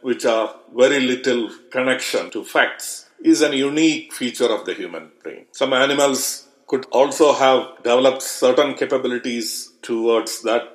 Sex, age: male, 50-69